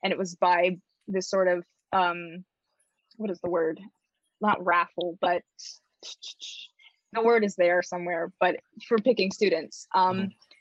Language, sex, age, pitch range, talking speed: English, female, 20-39, 180-225 Hz, 140 wpm